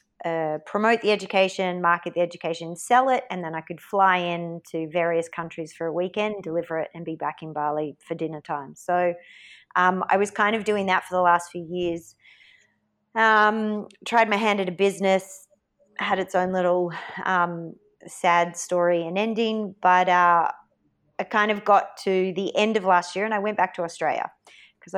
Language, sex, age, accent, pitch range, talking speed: English, female, 30-49, Australian, 170-200 Hz, 190 wpm